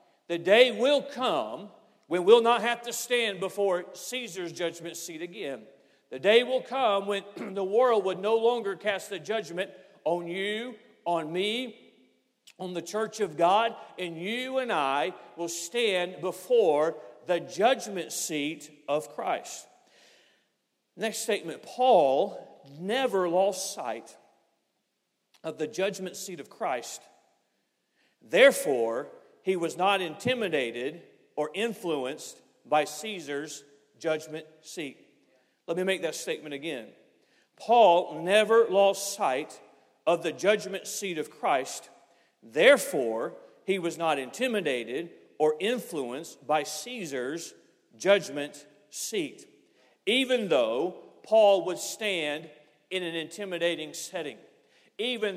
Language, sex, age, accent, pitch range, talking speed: English, male, 50-69, American, 165-225 Hz, 120 wpm